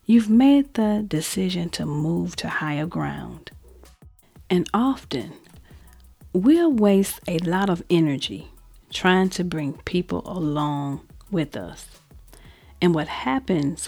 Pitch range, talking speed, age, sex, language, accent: 150-200 Hz, 115 wpm, 40-59, female, English, American